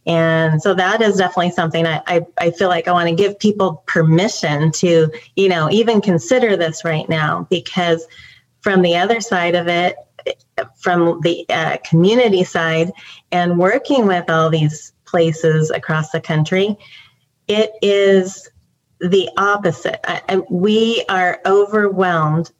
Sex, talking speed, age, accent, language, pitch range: female, 140 wpm, 30-49, American, English, 165-190 Hz